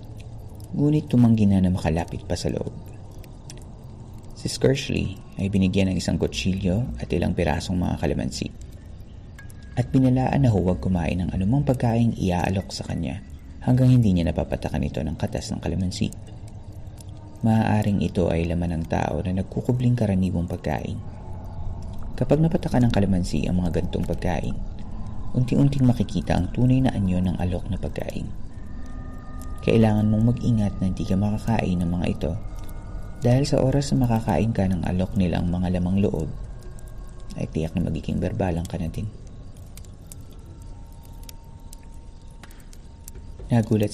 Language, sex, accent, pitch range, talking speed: Filipino, male, native, 90-110 Hz, 135 wpm